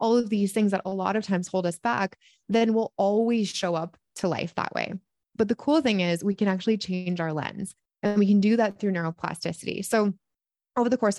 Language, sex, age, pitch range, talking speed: English, female, 20-39, 180-215 Hz, 230 wpm